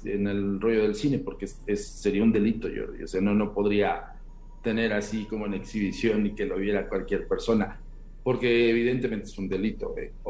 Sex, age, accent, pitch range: male, 50-69, Mexican, 105-140 Hz